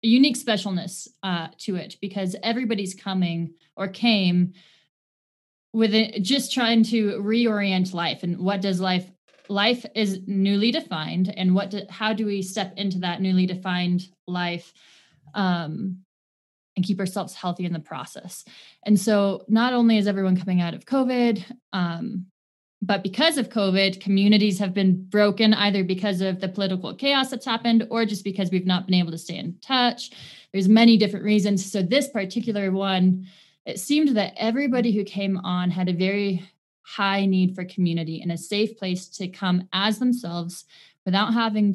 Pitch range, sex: 185-215 Hz, female